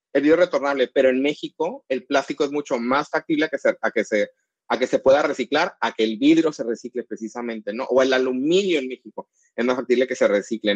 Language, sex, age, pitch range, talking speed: Spanish, male, 30-49, 125-165 Hz, 235 wpm